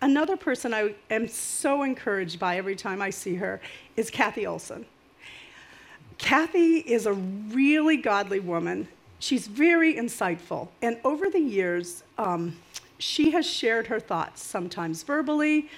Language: English